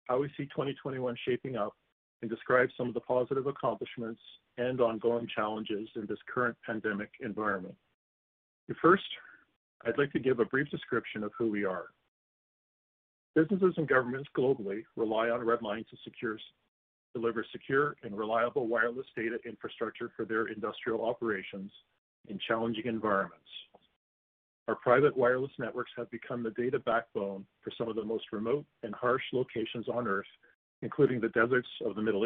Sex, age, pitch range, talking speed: male, 50-69, 110-130 Hz, 155 wpm